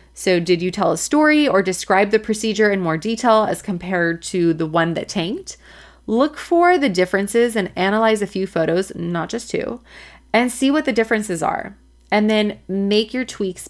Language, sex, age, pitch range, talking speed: English, female, 30-49, 175-225 Hz, 190 wpm